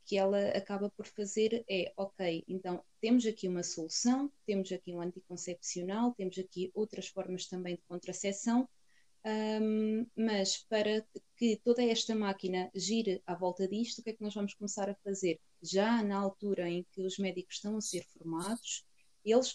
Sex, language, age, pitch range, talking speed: female, Portuguese, 20-39, 180-225 Hz, 165 wpm